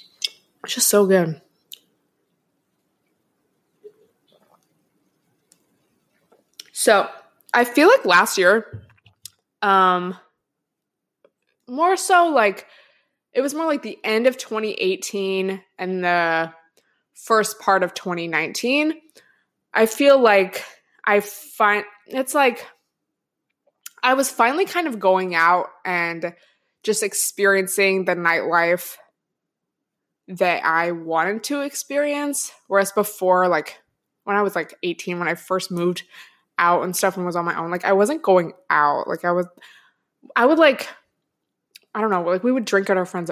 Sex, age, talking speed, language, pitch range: female, 20-39, 125 wpm, English, 175-220 Hz